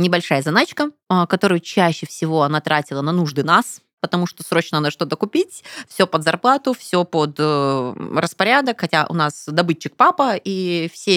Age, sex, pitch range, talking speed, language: 20-39, female, 150-195 Hz, 160 wpm, Russian